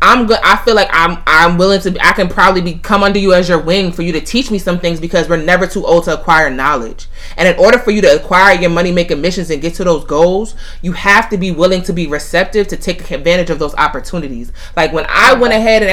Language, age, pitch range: English, 20-39, 155-185 Hz